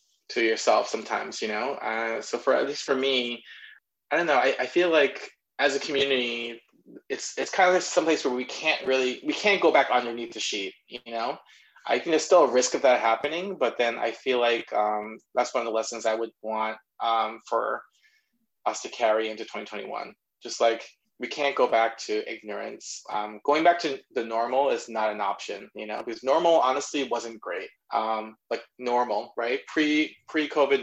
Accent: American